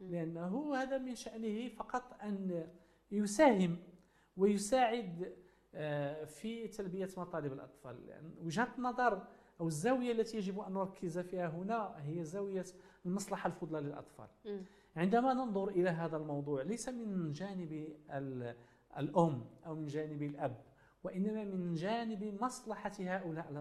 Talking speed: 115 wpm